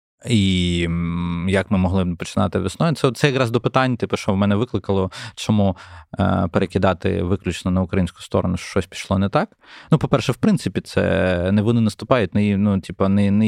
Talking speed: 170 wpm